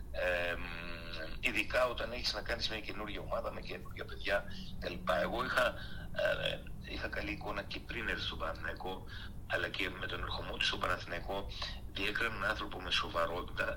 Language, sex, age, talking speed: Greek, male, 60-79, 150 wpm